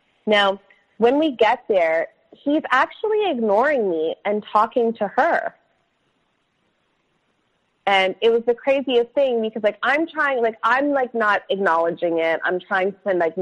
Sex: female